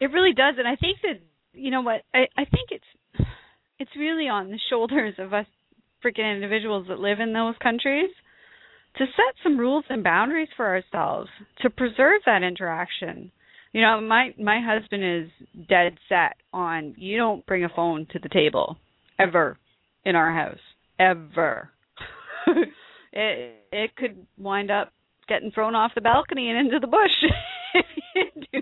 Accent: American